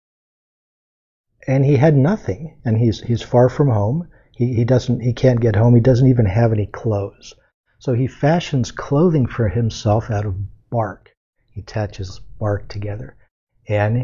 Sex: male